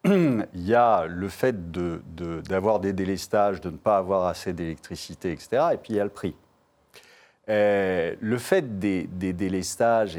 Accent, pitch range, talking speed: French, 95-140 Hz, 175 wpm